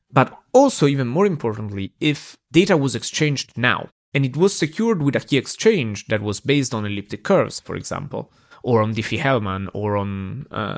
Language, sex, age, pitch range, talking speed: English, male, 30-49, 110-160 Hz, 180 wpm